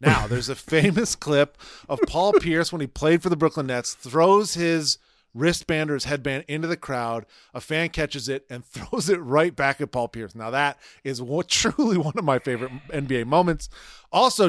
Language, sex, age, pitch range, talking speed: English, male, 30-49, 145-200 Hz, 200 wpm